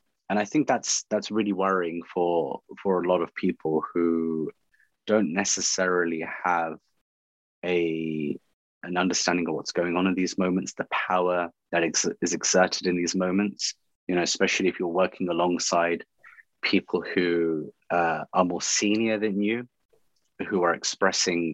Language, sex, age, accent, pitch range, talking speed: English, male, 30-49, British, 85-100 Hz, 150 wpm